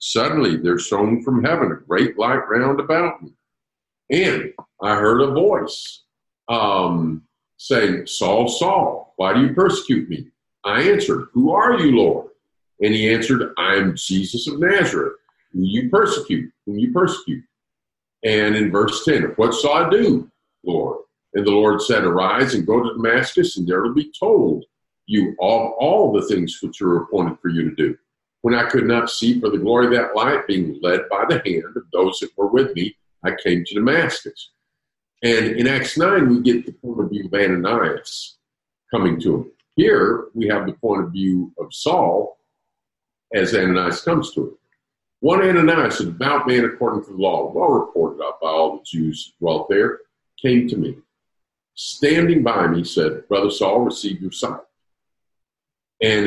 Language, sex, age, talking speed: English, male, 50-69, 180 wpm